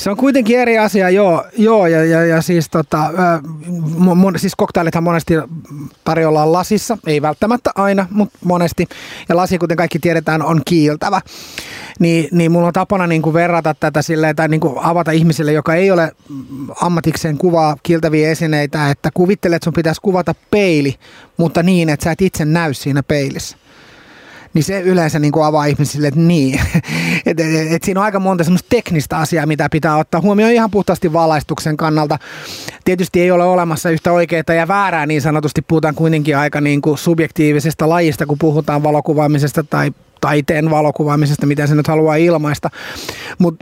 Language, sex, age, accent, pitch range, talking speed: Finnish, male, 30-49, native, 155-180 Hz, 170 wpm